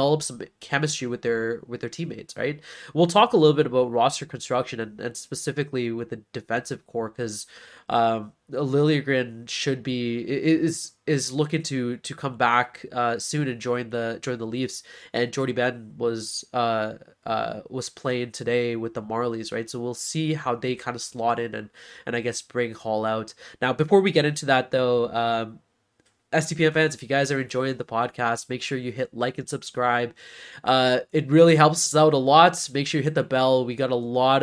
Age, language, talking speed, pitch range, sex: 20-39, English, 200 wpm, 115-140 Hz, male